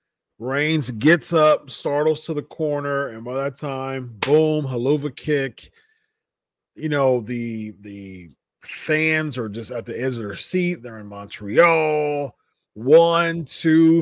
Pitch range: 125-150 Hz